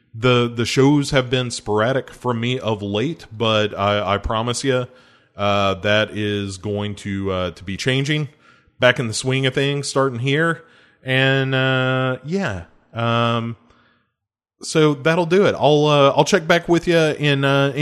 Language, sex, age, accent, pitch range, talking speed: English, male, 20-39, American, 100-135 Hz, 165 wpm